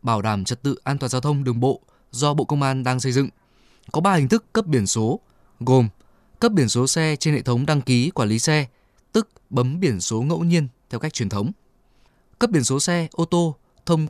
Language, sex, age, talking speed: Vietnamese, male, 20-39, 230 wpm